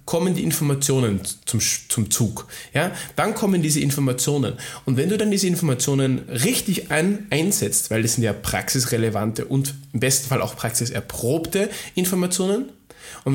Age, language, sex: 20-39, German, male